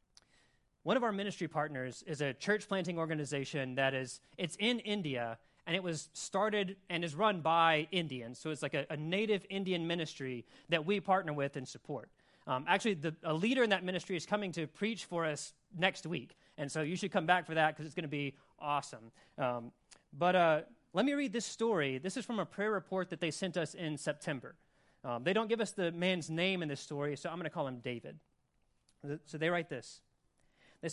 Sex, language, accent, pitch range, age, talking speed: male, English, American, 145-190 Hz, 30-49, 215 wpm